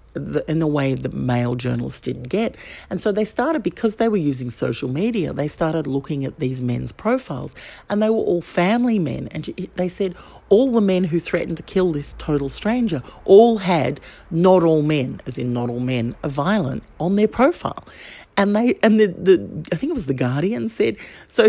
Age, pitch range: 50-69, 140-210 Hz